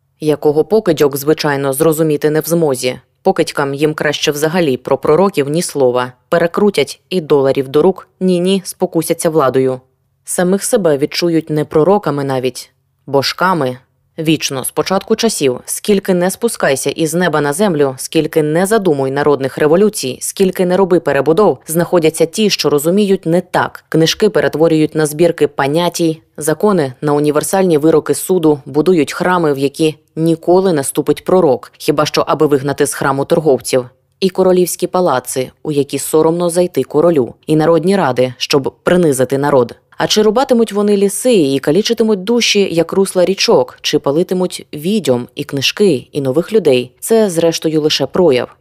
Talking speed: 145 wpm